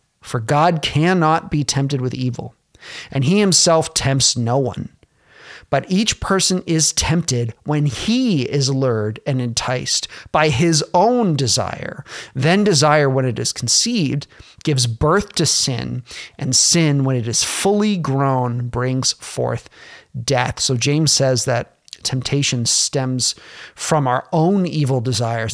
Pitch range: 125-155 Hz